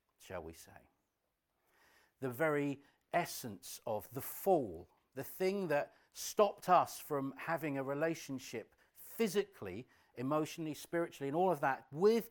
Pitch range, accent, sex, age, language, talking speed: 120-175 Hz, British, male, 50-69, English, 125 wpm